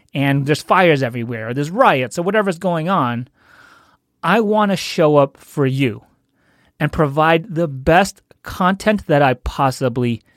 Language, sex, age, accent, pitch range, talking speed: English, male, 30-49, American, 130-180 Hz, 150 wpm